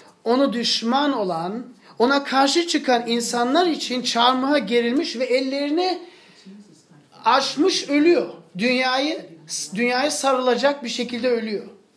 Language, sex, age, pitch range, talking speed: Turkish, male, 40-59, 195-280 Hz, 100 wpm